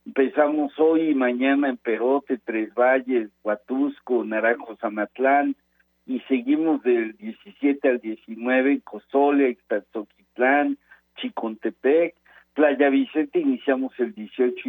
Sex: male